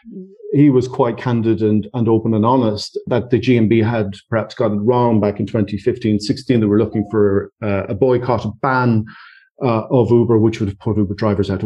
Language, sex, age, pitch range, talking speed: English, male, 40-59, 105-130 Hz, 195 wpm